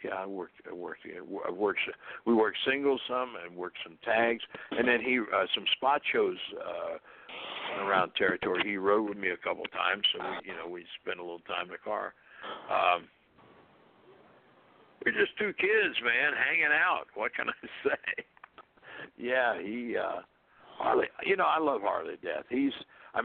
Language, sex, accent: English, male, American